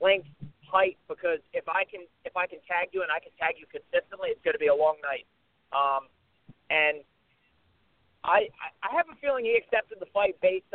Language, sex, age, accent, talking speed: English, male, 30-49, American, 200 wpm